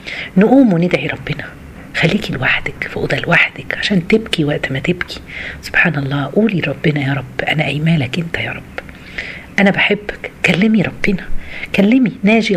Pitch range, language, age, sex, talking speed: 140-195 Hz, Arabic, 40-59, female, 145 wpm